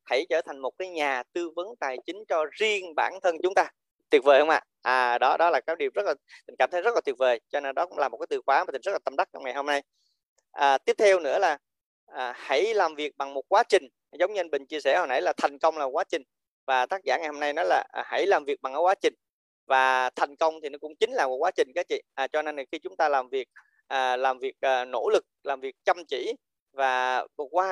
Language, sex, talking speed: Vietnamese, male, 280 wpm